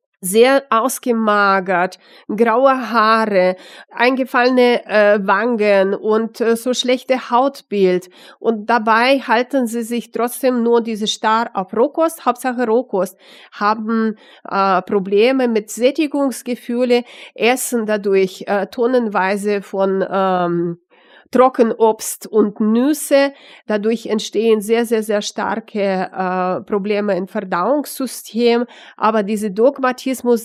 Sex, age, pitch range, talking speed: female, 30-49, 200-240 Hz, 100 wpm